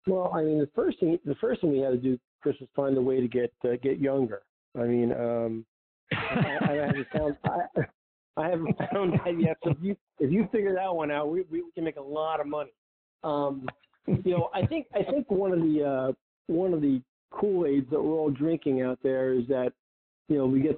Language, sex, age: English, male, 50-69